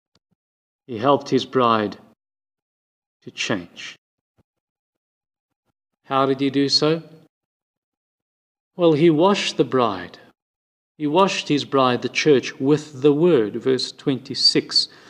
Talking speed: 105 wpm